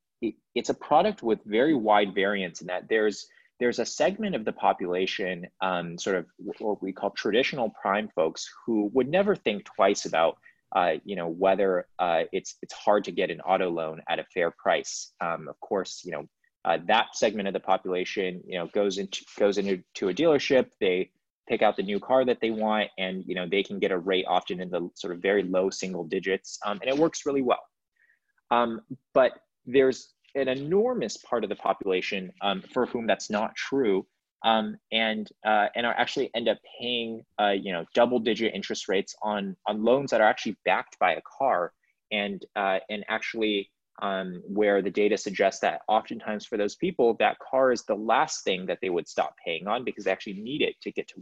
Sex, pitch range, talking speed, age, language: male, 100-125 Hz, 205 wpm, 20-39, English